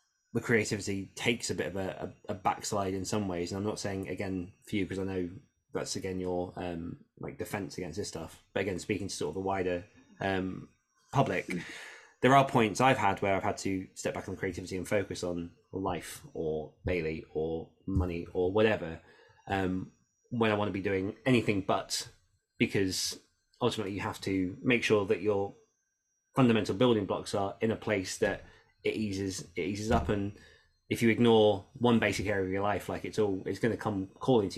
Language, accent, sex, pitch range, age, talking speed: English, British, male, 95-120 Hz, 20-39, 200 wpm